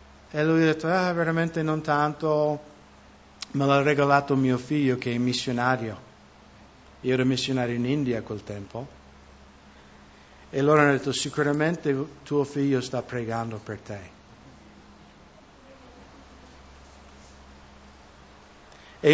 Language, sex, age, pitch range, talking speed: English, male, 60-79, 95-140 Hz, 115 wpm